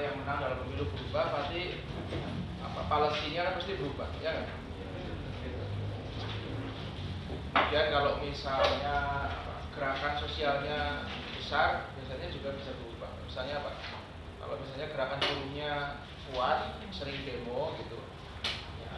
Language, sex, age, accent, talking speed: Indonesian, male, 20-39, native, 105 wpm